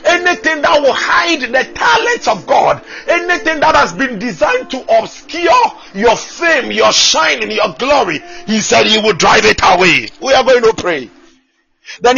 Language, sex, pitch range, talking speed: English, male, 205-315 Hz, 175 wpm